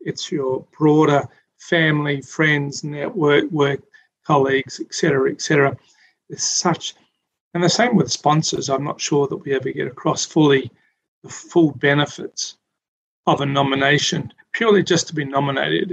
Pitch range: 135-160 Hz